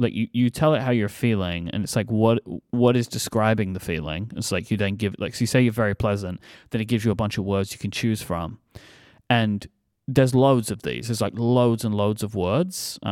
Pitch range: 105-130 Hz